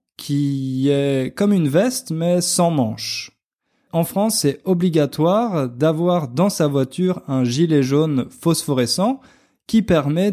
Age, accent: 20-39, French